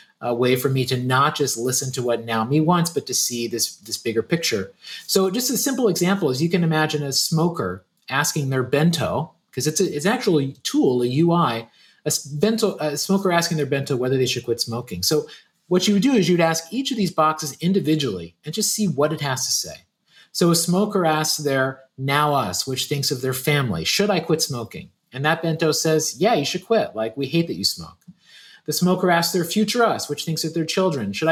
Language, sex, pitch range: English, male, 140-190 Hz